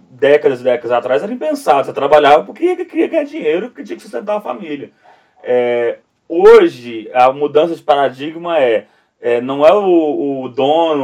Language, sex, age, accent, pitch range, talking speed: Portuguese, male, 20-39, Brazilian, 130-215 Hz, 175 wpm